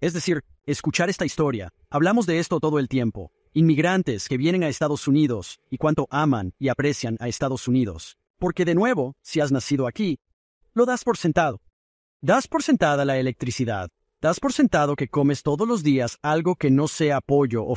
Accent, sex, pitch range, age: Mexican, male, 120-170 Hz, 40-59